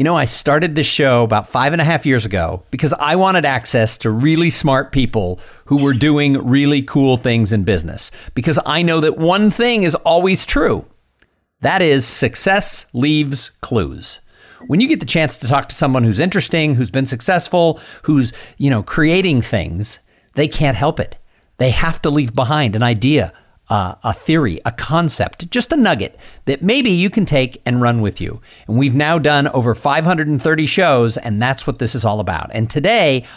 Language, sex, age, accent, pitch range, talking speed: English, male, 50-69, American, 120-165 Hz, 190 wpm